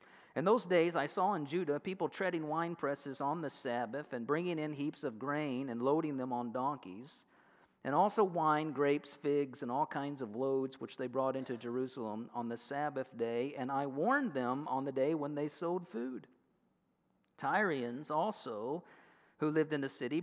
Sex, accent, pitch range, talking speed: male, American, 130-180 Hz, 185 wpm